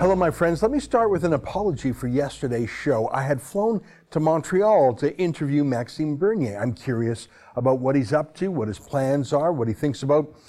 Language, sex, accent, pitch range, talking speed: English, male, American, 125-165 Hz, 205 wpm